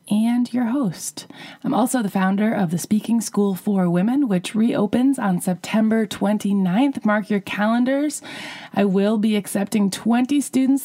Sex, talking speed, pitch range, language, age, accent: female, 150 wpm, 185-250 Hz, English, 30-49, American